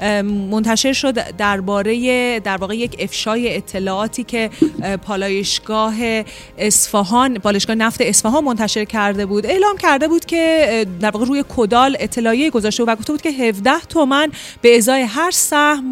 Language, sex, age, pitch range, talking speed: Persian, female, 30-49, 205-250 Hz, 145 wpm